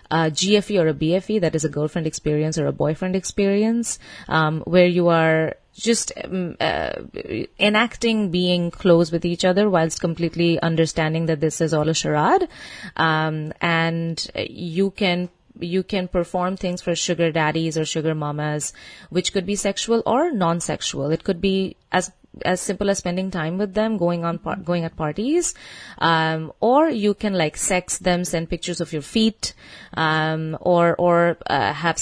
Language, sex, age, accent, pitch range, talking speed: Hindi, female, 30-49, native, 160-205 Hz, 170 wpm